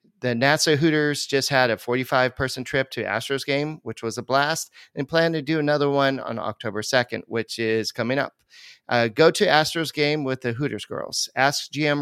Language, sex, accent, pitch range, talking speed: English, male, American, 115-150 Hz, 195 wpm